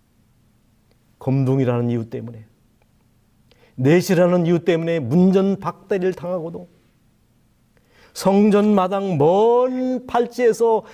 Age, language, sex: 40-59, Korean, male